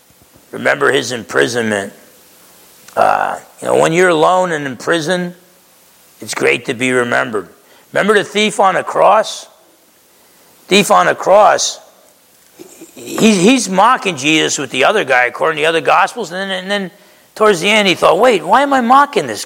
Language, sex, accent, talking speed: English, male, American, 170 wpm